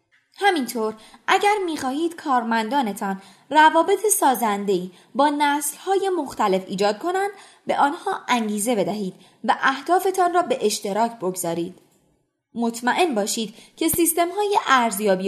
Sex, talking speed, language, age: female, 100 wpm, Persian, 20-39